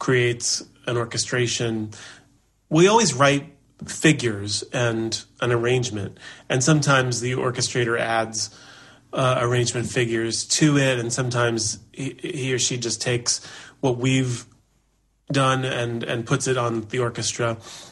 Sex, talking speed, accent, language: male, 125 wpm, American, English